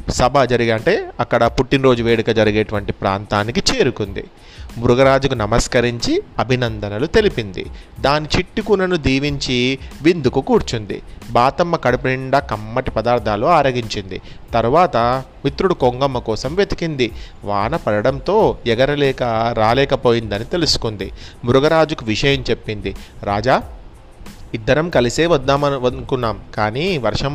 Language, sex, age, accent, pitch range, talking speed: Telugu, male, 30-49, native, 110-135 Hz, 95 wpm